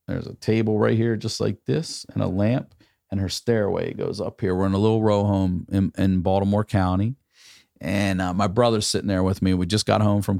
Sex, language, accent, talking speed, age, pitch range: male, English, American, 230 wpm, 40-59, 90-110 Hz